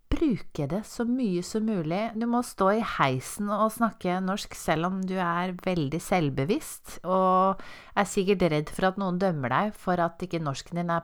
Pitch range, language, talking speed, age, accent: 150-210 Hz, English, 205 wpm, 30-49, Swedish